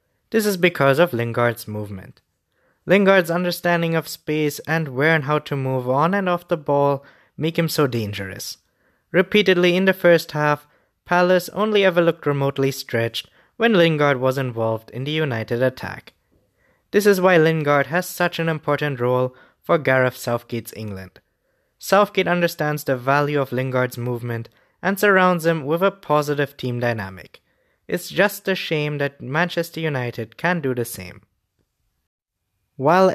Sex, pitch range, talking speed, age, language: male, 130-180 Hz, 150 wpm, 20-39, English